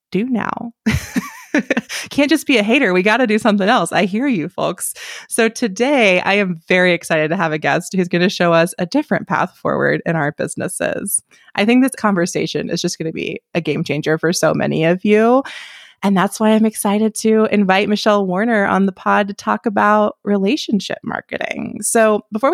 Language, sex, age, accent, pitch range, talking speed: English, female, 20-39, American, 170-225 Hz, 200 wpm